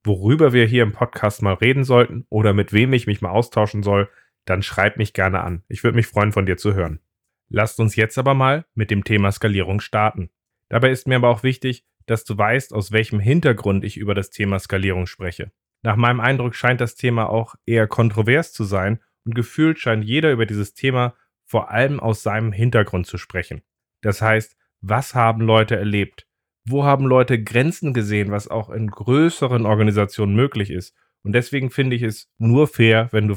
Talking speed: 195 wpm